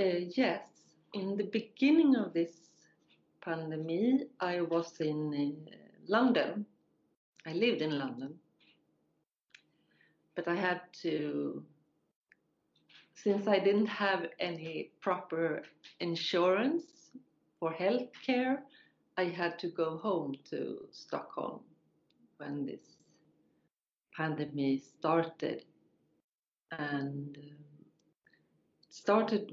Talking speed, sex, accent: 90 wpm, female, Swedish